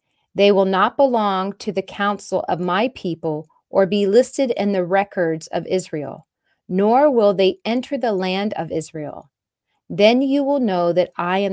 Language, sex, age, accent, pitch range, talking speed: English, female, 30-49, American, 175-220 Hz, 170 wpm